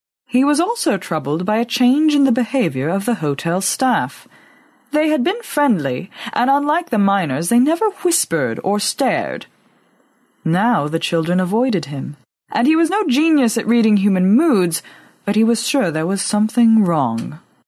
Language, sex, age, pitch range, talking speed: English, female, 20-39, 155-240 Hz, 165 wpm